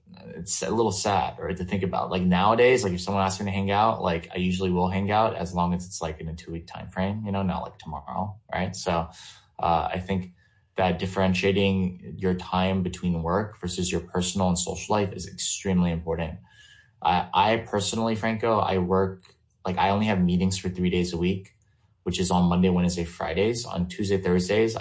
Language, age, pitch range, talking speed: English, 20-39, 90-100 Hz, 205 wpm